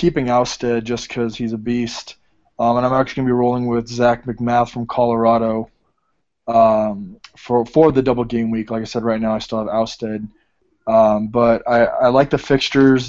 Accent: American